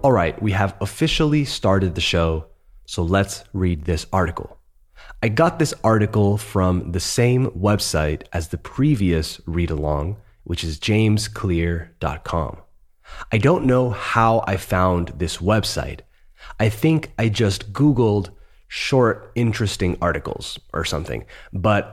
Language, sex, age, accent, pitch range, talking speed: Spanish, male, 30-49, American, 85-110 Hz, 130 wpm